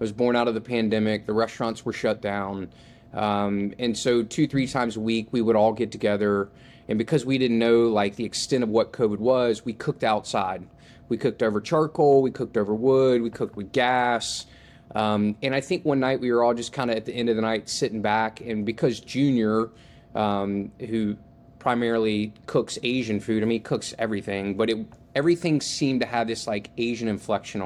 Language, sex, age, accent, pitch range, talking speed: English, male, 20-39, American, 105-125 Hz, 210 wpm